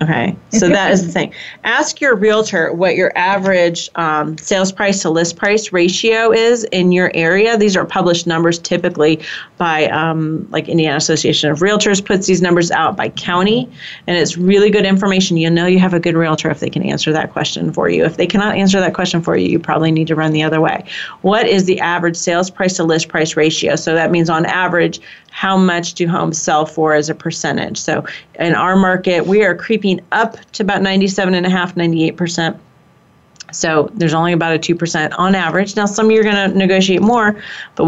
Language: English